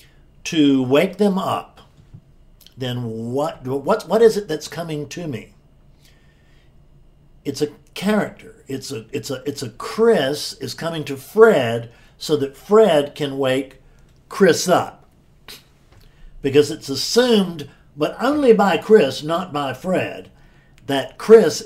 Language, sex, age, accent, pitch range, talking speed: English, male, 60-79, American, 135-205 Hz, 130 wpm